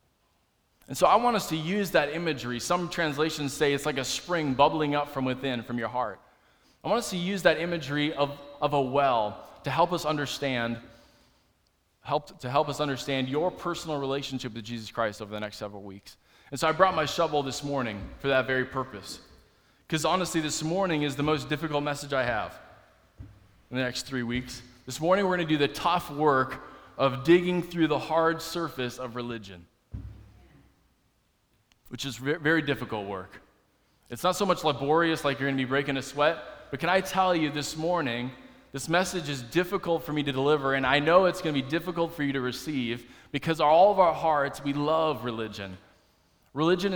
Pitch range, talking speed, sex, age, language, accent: 130-165 Hz, 195 wpm, male, 20-39, English, American